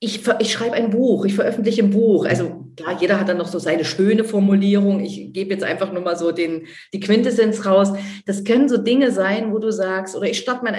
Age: 40-59